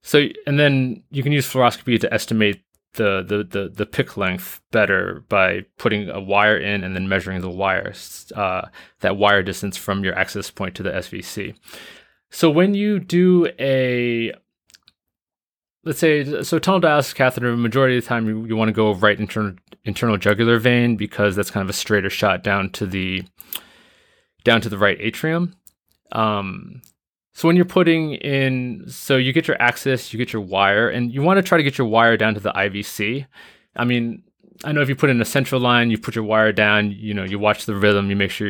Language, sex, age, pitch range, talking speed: English, male, 20-39, 100-130 Hz, 205 wpm